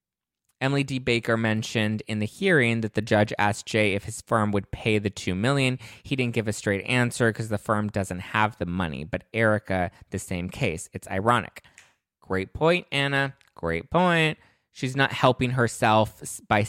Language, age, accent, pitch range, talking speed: English, 20-39, American, 100-125 Hz, 180 wpm